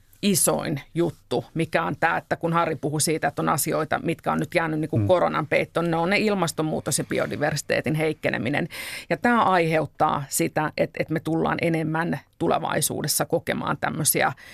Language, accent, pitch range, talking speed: Finnish, native, 160-180 Hz, 170 wpm